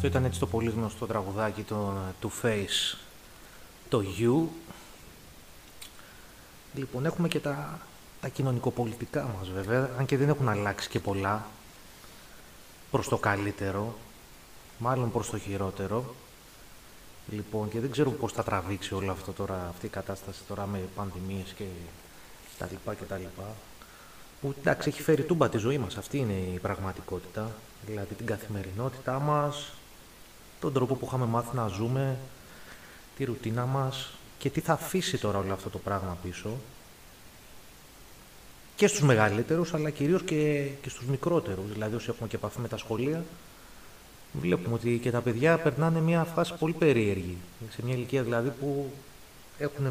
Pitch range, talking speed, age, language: 100-135 Hz, 150 wpm, 30-49, Greek